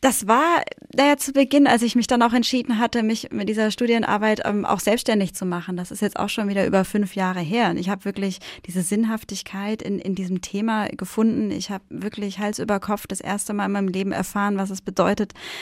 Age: 10-29